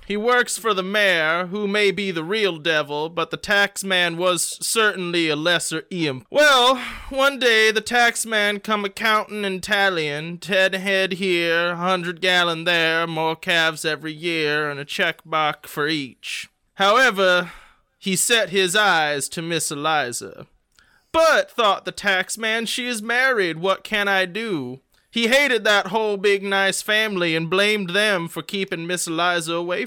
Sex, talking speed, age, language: male, 155 wpm, 20-39, English